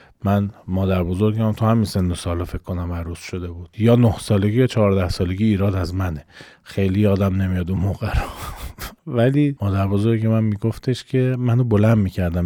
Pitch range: 95-130 Hz